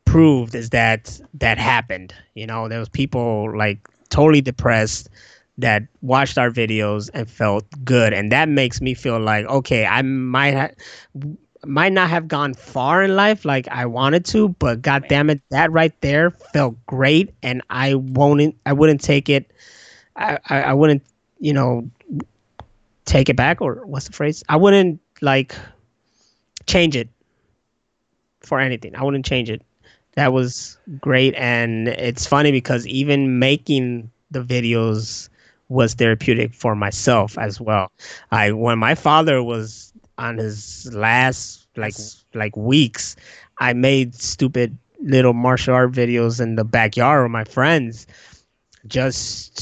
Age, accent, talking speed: 20-39, American, 150 wpm